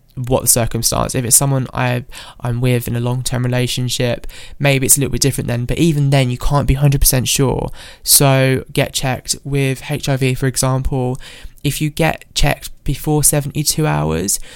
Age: 20-39